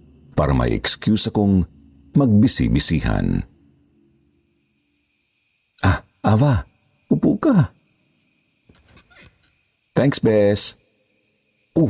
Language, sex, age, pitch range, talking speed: Filipino, male, 50-69, 80-120 Hz, 60 wpm